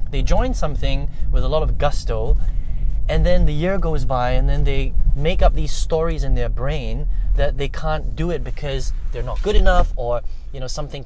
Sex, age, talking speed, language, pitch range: male, 20-39, 205 wpm, English, 120-155 Hz